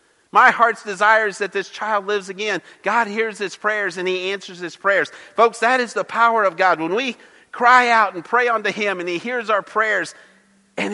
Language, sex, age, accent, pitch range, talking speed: English, male, 50-69, American, 180-230 Hz, 215 wpm